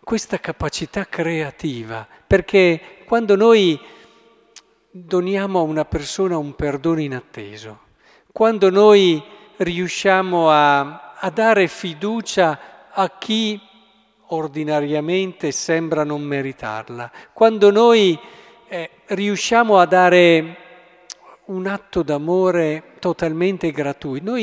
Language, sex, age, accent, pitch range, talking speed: Italian, male, 50-69, native, 145-200 Hz, 95 wpm